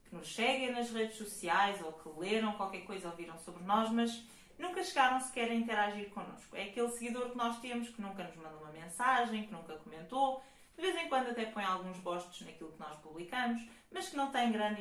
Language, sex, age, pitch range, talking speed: Portuguese, female, 20-39, 185-245 Hz, 210 wpm